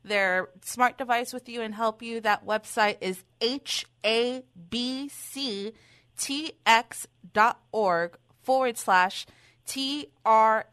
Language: English